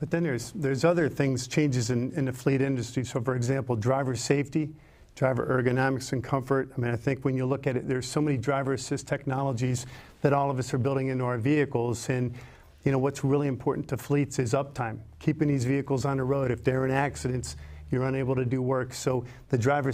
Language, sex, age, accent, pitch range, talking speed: English, male, 50-69, American, 125-140 Hz, 220 wpm